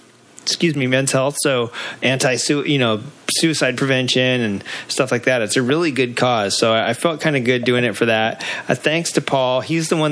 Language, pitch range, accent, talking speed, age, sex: English, 115-145 Hz, American, 210 wpm, 30-49, male